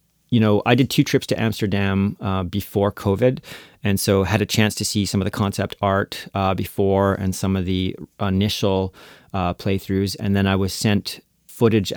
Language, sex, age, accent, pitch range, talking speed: English, male, 30-49, American, 95-110 Hz, 190 wpm